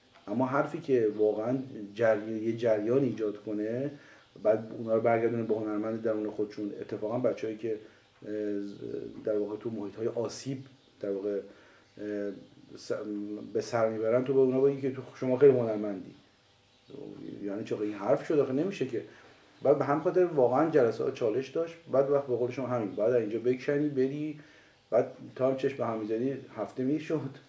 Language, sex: Persian, male